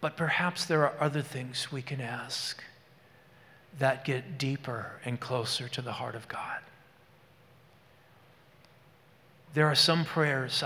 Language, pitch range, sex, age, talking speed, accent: English, 130-165 Hz, male, 40-59, 130 wpm, American